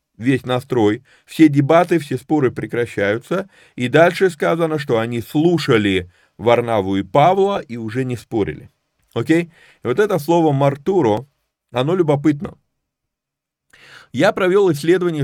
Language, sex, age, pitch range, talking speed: Russian, male, 30-49, 120-160 Hz, 120 wpm